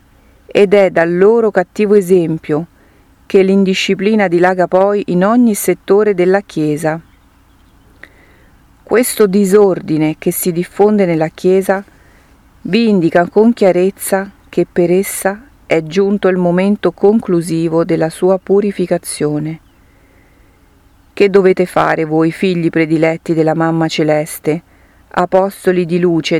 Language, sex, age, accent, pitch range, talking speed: Italian, female, 40-59, native, 155-195 Hz, 110 wpm